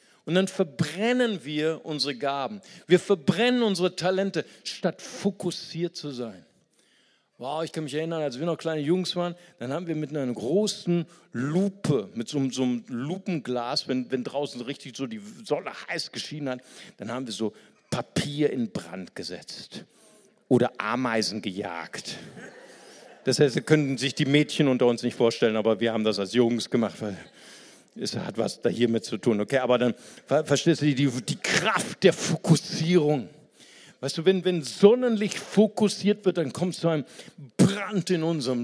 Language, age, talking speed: German, 50-69, 170 wpm